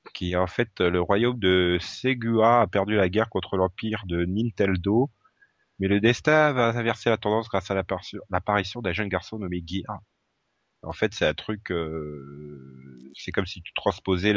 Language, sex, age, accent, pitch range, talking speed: French, male, 30-49, French, 85-105 Hz, 175 wpm